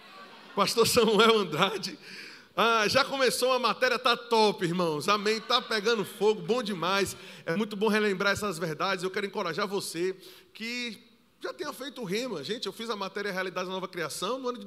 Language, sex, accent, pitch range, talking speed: Portuguese, male, Brazilian, 185-225 Hz, 185 wpm